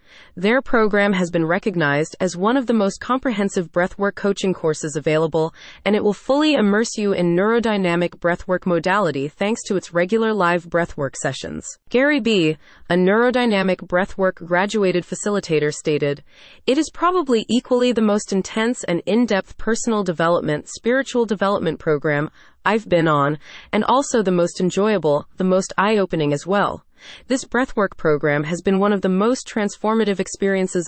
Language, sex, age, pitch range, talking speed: English, female, 30-49, 175-220 Hz, 150 wpm